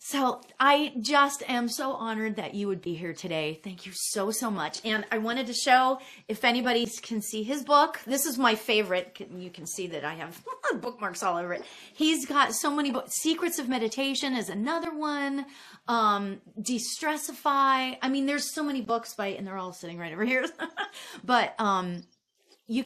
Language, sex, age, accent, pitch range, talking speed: English, female, 30-49, American, 195-260 Hz, 190 wpm